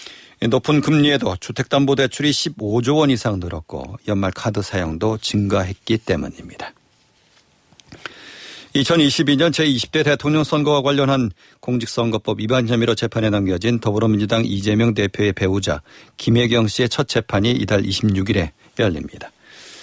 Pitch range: 105-130 Hz